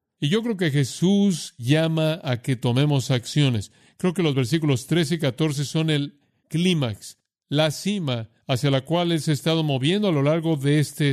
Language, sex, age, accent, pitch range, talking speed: Spanish, male, 50-69, Mexican, 130-165 Hz, 190 wpm